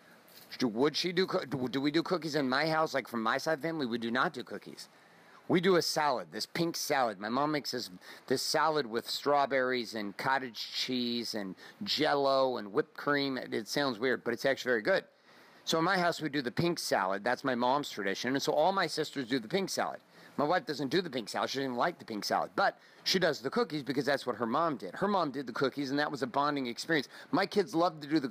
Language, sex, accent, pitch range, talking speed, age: English, male, American, 120-145 Hz, 250 wpm, 40-59